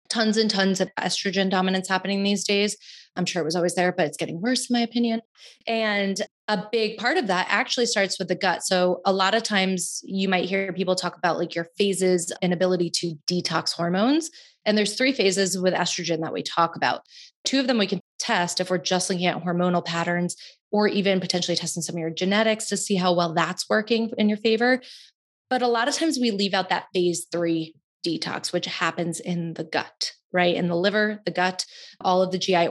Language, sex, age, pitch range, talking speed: English, female, 20-39, 175-205 Hz, 220 wpm